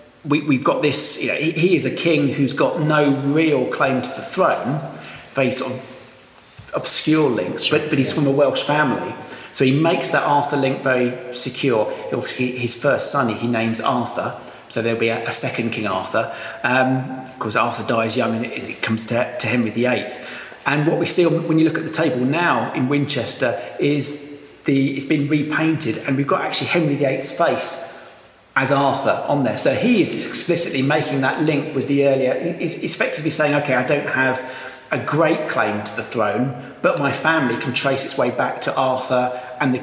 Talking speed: 205 wpm